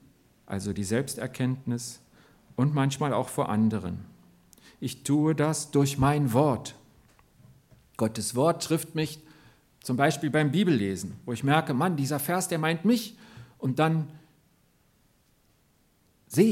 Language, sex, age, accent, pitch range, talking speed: German, male, 50-69, German, 125-185 Hz, 125 wpm